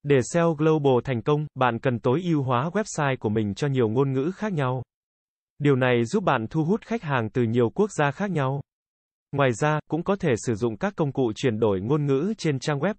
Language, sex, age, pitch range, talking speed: Vietnamese, male, 20-39, 120-160 Hz, 230 wpm